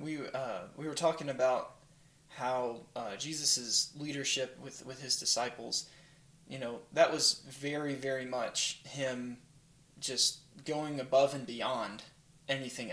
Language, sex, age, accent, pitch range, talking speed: English, male, 20-39, American, 125-145 Hz, 130 wpm